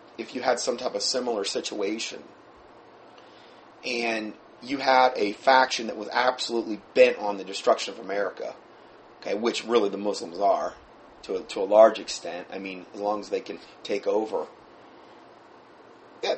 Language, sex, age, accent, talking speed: English, male, 30-49, American, 160 wpm